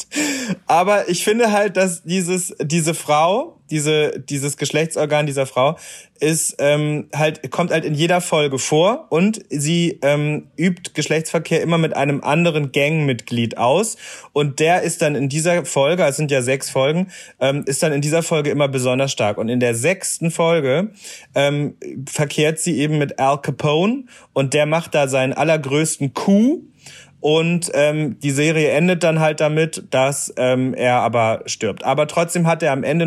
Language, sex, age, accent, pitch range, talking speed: German, male, 30-49, German, 135-170 Hz, 165 wpm